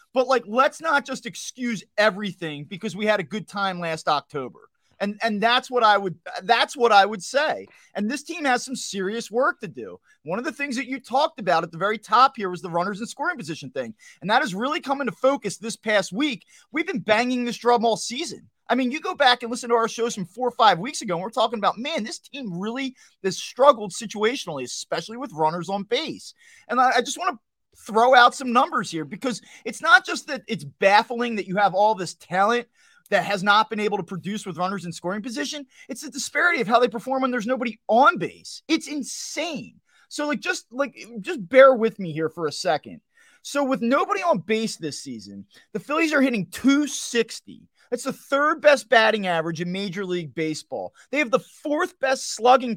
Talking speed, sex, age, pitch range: 220 wpm, male, 30-49, 195-270 Hz